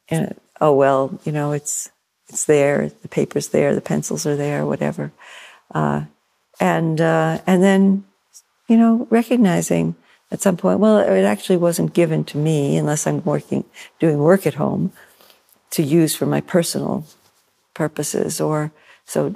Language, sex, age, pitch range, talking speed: English, female, 60-79, 155-190 Hz, 150 wpm